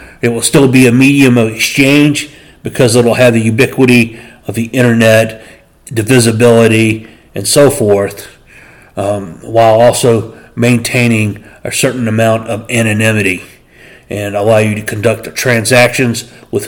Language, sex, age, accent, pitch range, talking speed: English, male, 40-59, American, 115-135 Hz, 135 wpm